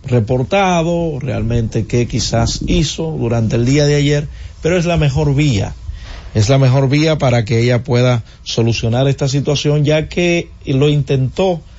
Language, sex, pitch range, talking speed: Spanish, male, 115-145 Hz, 155 wpm